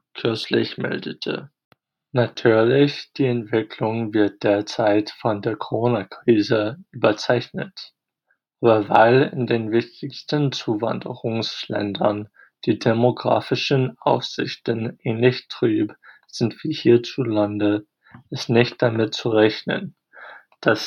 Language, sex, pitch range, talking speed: German, male, 110-130 Hz, 90 wpm